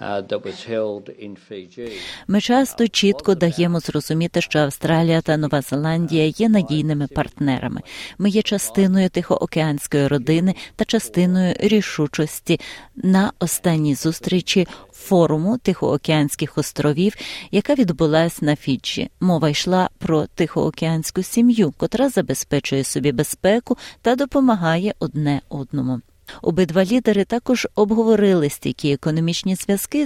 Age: 30-49